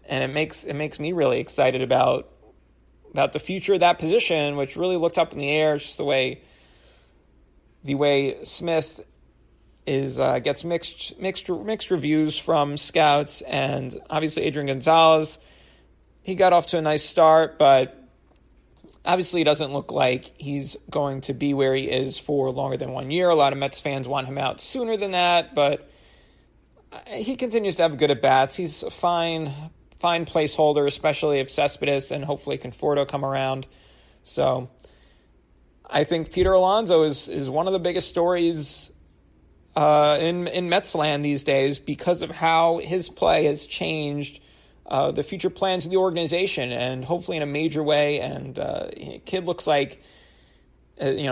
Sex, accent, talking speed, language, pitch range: male, American, 165 wpm, English, 135-170 Hz